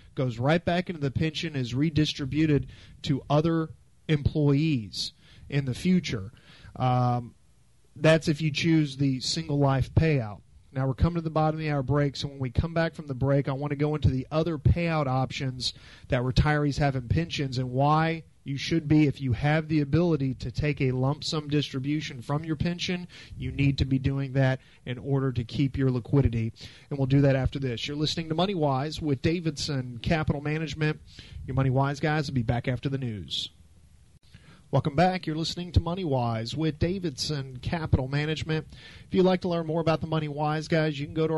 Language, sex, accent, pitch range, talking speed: English, male, American, 130-155 Hz, 200 wpm